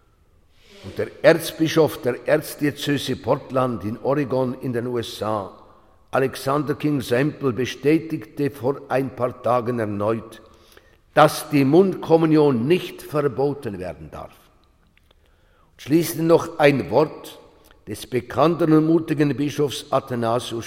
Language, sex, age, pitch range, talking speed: German, male, 50-69, 110-150 Hz, 110 wpm